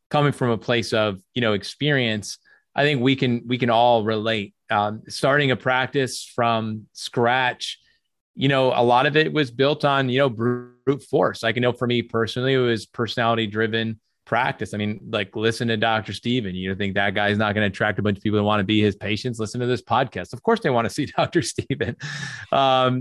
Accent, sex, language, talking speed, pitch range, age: American, male, English, 220 wpm, 110-130 Hz, 30-49